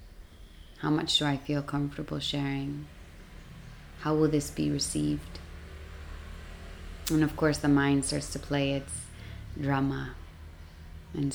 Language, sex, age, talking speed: English, female, 20-39, 120 wpm